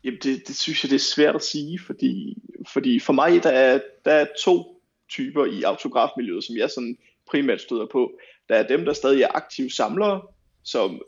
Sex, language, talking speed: male, Danish, 200 wpm